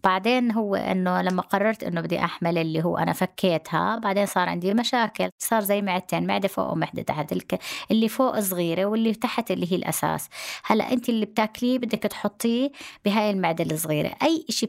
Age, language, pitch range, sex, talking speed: 20-39, Arabic, 180-225 Hz, female, 170 wpm